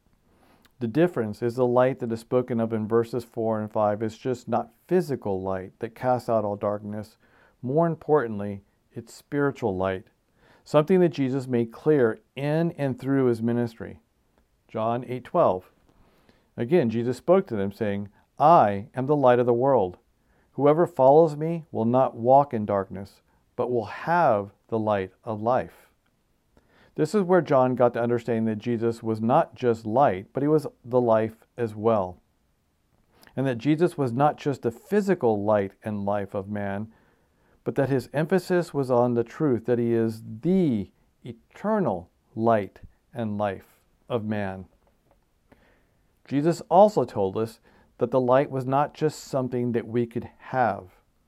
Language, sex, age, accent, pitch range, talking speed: English, male, 50-69, American, 110-135 Hz, 160 wpm